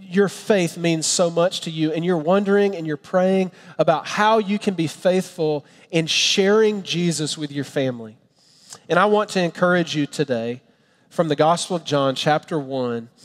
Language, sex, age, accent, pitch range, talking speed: English, male, 40-59, American, 145-175 Hz, 175 wpm